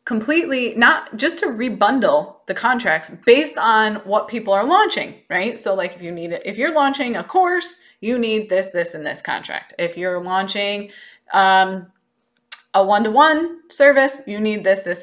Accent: American